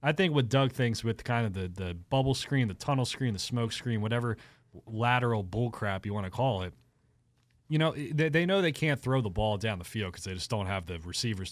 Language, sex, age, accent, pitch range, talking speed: English, male, 30-49, American, 100-125 Hz, 245 wpm